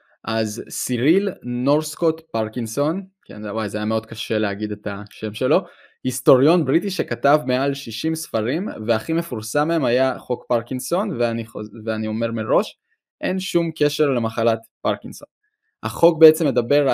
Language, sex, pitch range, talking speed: Hebrew, male, 115-150 Hz, 135 wpm